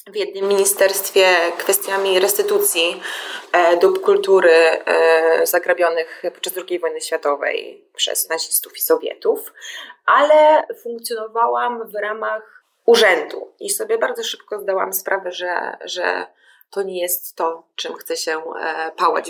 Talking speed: 115 wpm